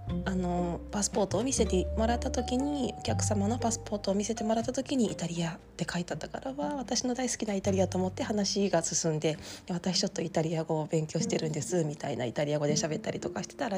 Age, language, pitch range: 20-39, Japanese, 160-215 Hz